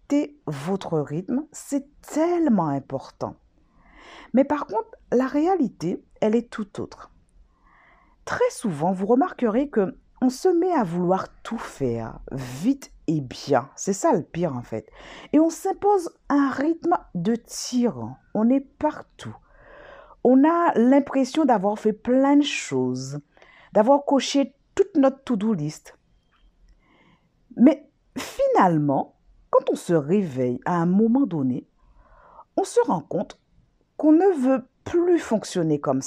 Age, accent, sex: 50-69, French, female